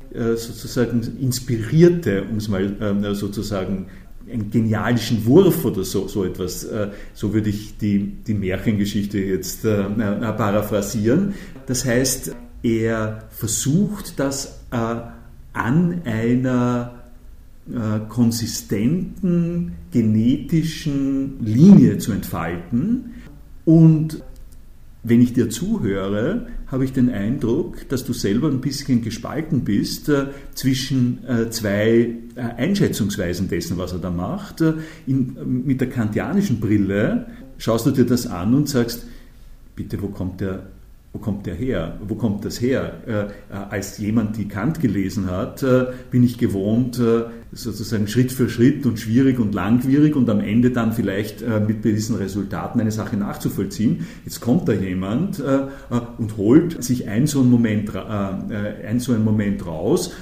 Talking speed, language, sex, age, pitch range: 135 wpm, German, male, 50-69, 105-130 Hz